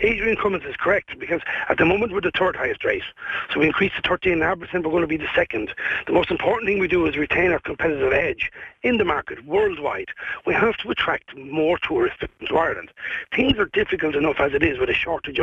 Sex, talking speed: male, 220 wpm